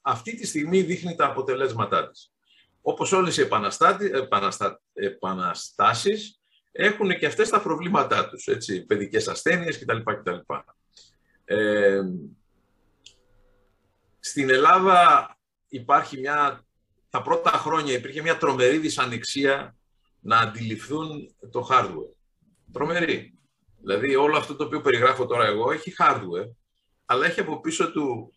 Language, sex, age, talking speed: Greek, male, 50-69, 110 wpm